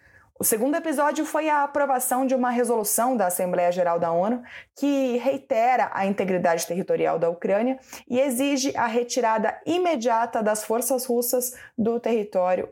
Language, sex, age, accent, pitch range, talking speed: Portuguese, female, 20-39, Brazilian, 215-270 Hz, 145 wpm